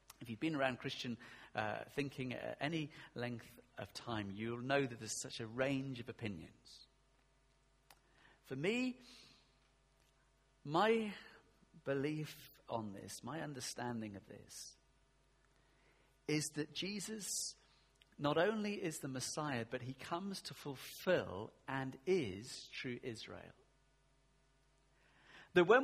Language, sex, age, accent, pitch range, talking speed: English, male, 40-59, British, 135-210 Hz, 115 wpm